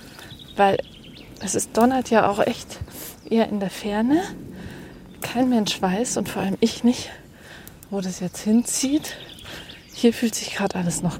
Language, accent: German, German